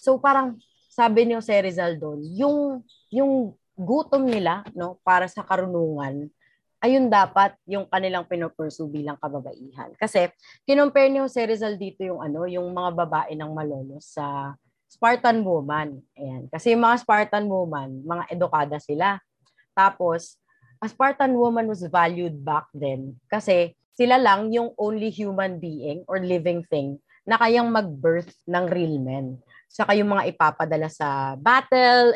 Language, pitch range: Filipino, 155-220 Hz